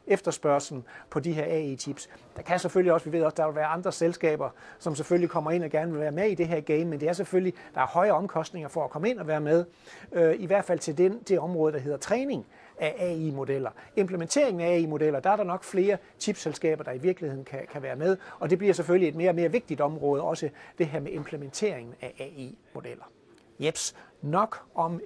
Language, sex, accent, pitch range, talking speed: Danish, male, native, 145-185 Hz, 225 wpm